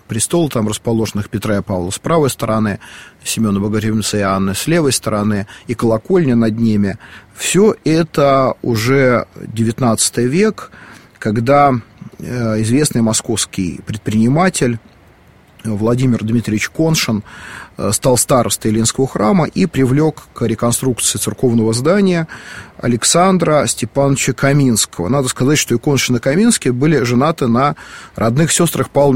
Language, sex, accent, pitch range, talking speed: Russian, male, native, 110-140 Hz, 120 wpm